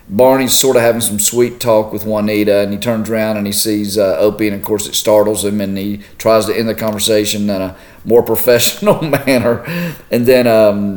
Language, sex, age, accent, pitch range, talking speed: English, male, 40-59, American, 105-125 Hz, 215 wpm